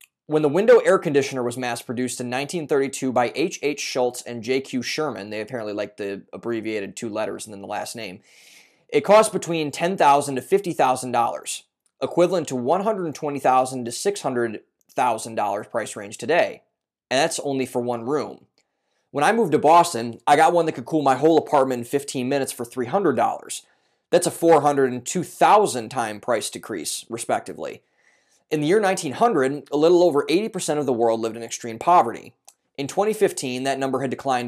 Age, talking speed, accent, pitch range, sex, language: 20-39, 165 wpm, American, 125-155 Hz, male, English